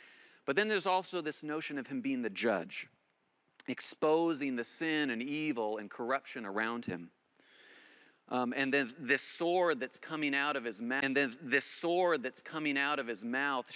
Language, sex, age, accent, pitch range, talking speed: English, male, 40-59, American, 115-160 Hz, 180 wpm